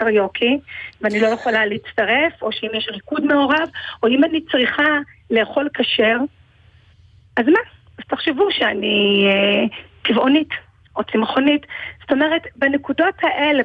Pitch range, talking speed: 220-315 Hz, 125 wpm